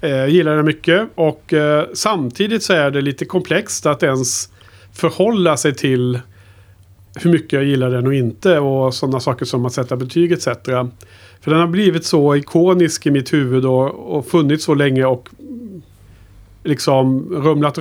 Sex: male